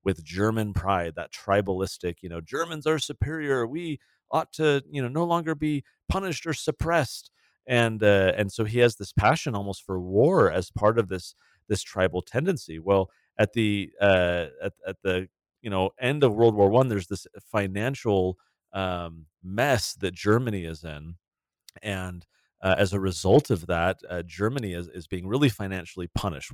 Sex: male